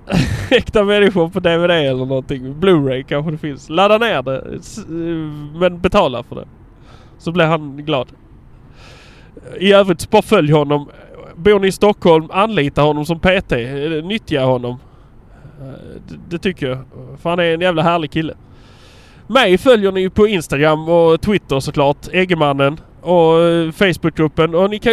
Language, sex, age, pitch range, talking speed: English, male, 20-39, 145-200 Hz, 145 wpm